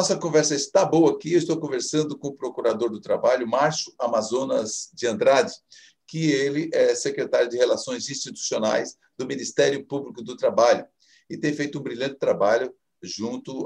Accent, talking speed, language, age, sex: Brazilian, 160 wpm, Portuguese, 50-69, male